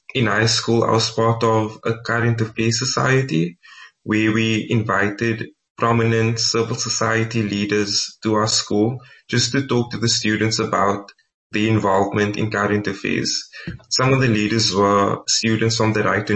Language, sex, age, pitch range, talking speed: English, male, 20-39, 105-120 Hz, 160 wpm